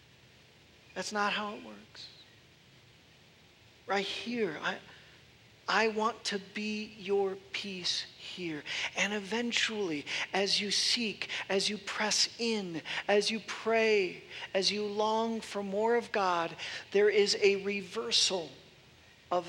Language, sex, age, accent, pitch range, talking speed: English, male, 40-59, American, 175-215 Hz, 120 wpm